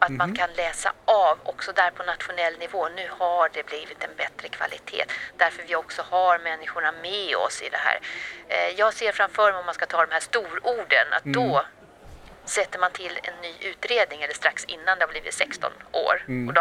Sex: female